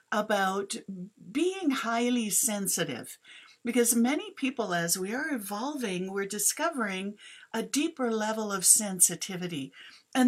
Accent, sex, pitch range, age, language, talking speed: American, female, 190-235 Hz, 60-79, English, 110 wpm